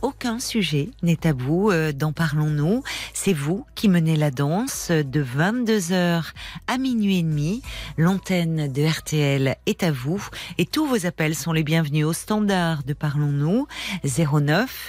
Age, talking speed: 40-59, 150 wpm